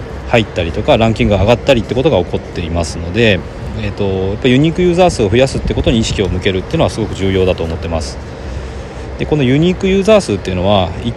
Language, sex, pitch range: Japanese, male, 90-125 Hz